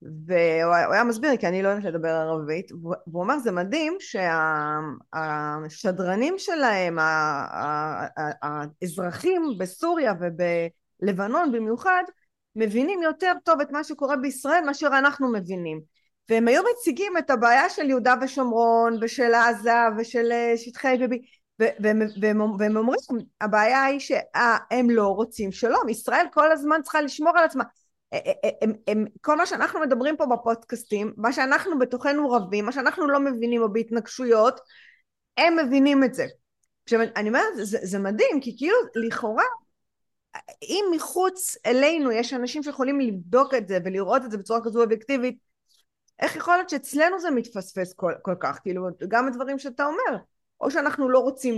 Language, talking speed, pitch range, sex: Hebrew, 150 wpm, 200-285 Hz, female